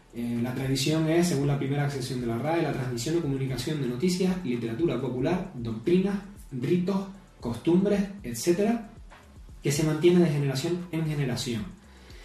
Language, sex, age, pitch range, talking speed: Spanish, male, 20-39, 125-175 Hz, 145 wpm